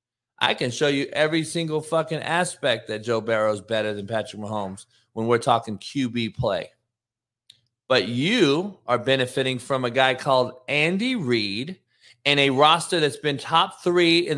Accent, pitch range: American, 120-190 Hz